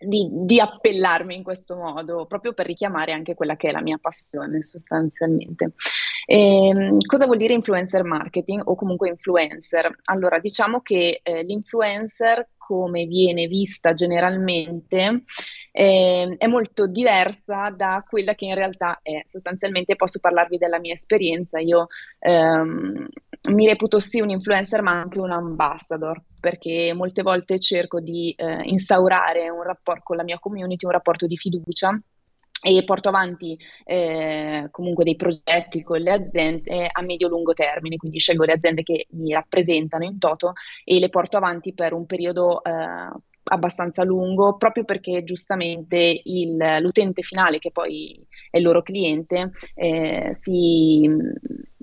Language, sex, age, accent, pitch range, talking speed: Italian, female, 20-39, native, 170-195 Hz, 140 wpm